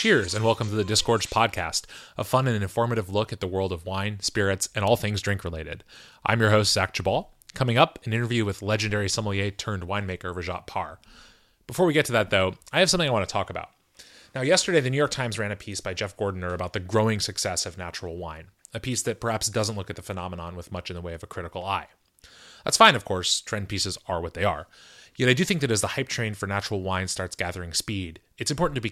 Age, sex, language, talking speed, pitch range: 30-49, male, English, 245 wpm, 95-125 Hz